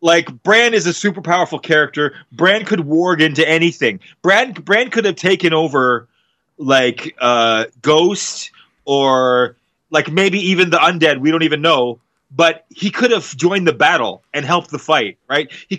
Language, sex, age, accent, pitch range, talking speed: English, male, 30-49, American, 145-195 Hz, 165 wpm